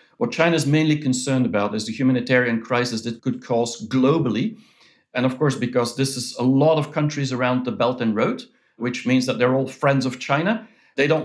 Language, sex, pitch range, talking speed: English, male, 120-140 Hz, 210 wpm